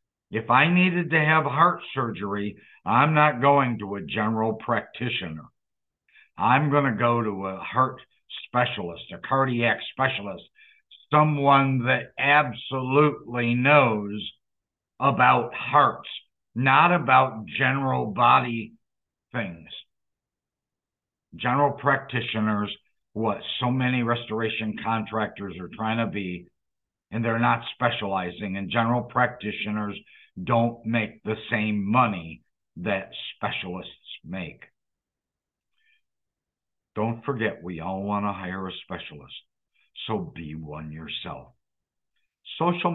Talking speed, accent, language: 105 wpm, American, English